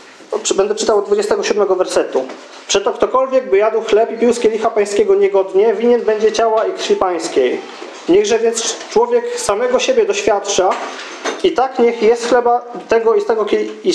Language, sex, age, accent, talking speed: English, male, 40-59, Polish, 155 wpm